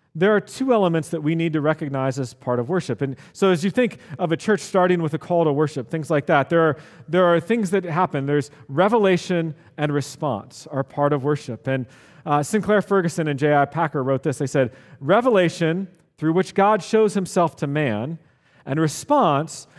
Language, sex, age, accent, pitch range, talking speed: English, male, 40-59, American, 140-185 Hz, 200 wpm